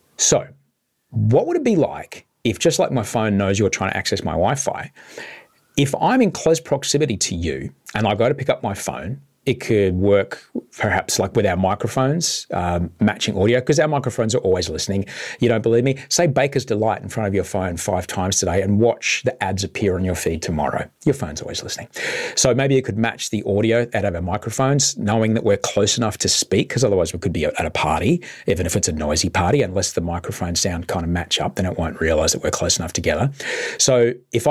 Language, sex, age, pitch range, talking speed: English, male, 40-59, 95-130 Hz, 225 wpm